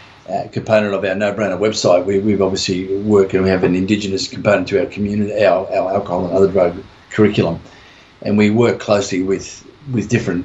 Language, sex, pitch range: English, male, 95-110 Hz